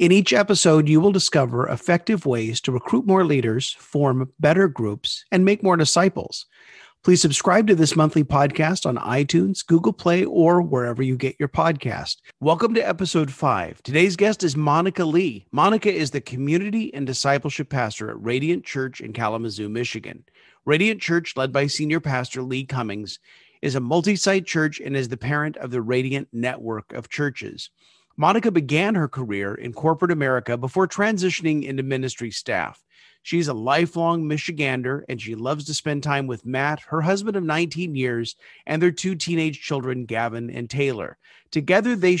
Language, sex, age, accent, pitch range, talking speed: English, male, 40-59, American, 130-170 Hz, 170 wpm